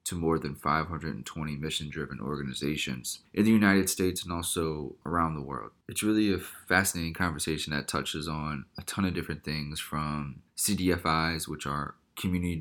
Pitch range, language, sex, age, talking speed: 75-90 Hz, English, male, 20-39, 160 wpm